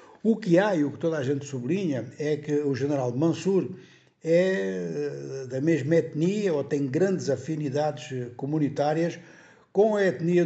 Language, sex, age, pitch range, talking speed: Portuguese, male, 60-79, 130-165 Hz, 155 wpm